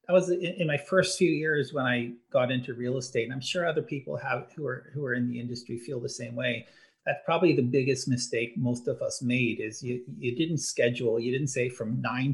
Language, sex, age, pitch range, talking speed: English, male, 40-59, 120-145 Hz, 240 wpm